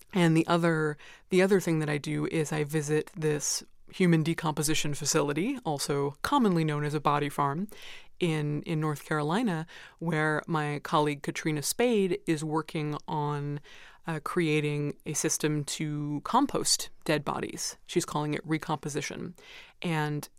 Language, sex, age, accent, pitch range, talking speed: English, female, 20-39, American, 150-175 Hz, 140 wpm